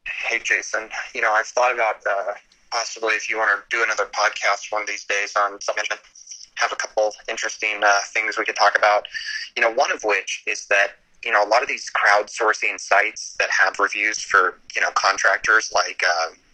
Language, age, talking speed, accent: English, 30-49, 210 wpm, American